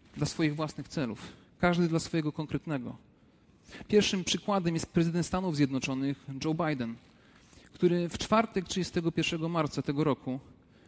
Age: 40-59